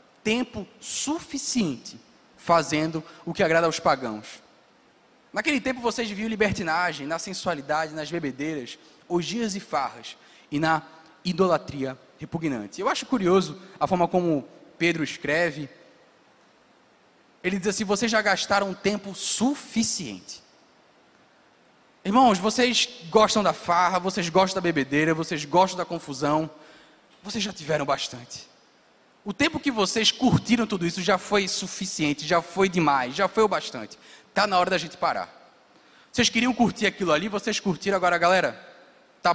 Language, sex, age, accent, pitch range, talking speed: Portuguese, male, 20-39, Brazilian, 160-215 Hz, 135 wpm